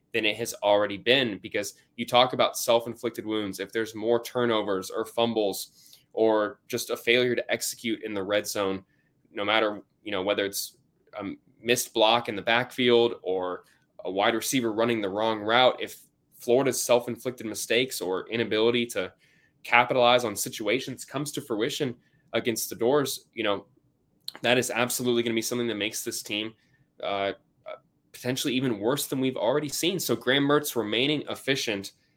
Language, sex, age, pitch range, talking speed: English, male, 10-29, 105-125 Hz, 165 wpm